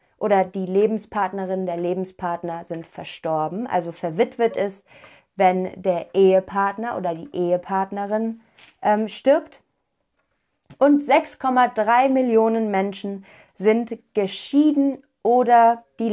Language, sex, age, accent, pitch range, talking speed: German, female, 30-49, German, 185-250 Hz, 95 wpm